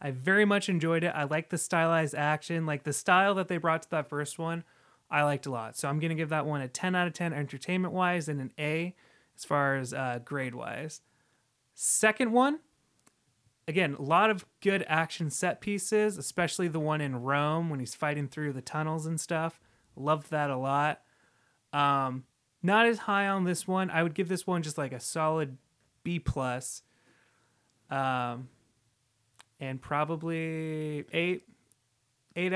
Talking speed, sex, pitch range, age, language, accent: 175 wpm, male, 135-180 Hz, 30-49, English, American